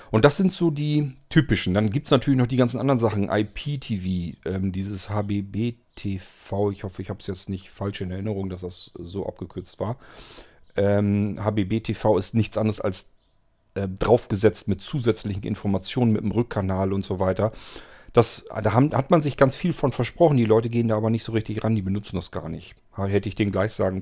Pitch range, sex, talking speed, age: 100-125 Hz, male, 200 wpm, 40-59